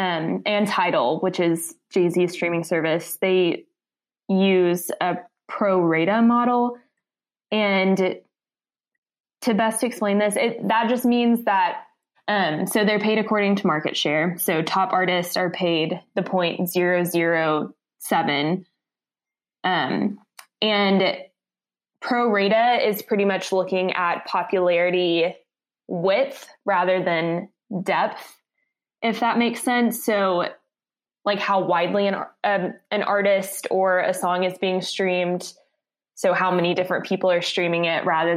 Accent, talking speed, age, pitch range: American, 120 wpm, 20-39, 180-215 Hz